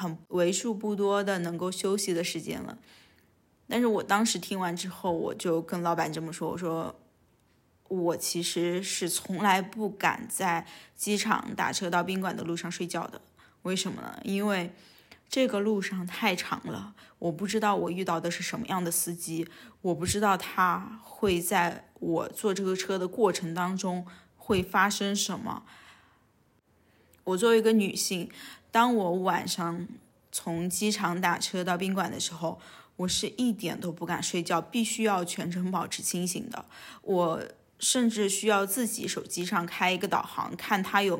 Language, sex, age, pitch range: Chinese, female, 20-39, 175-205 Hz